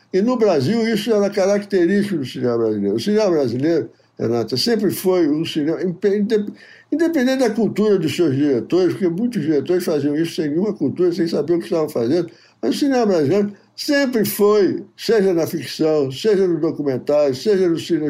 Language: Portuguese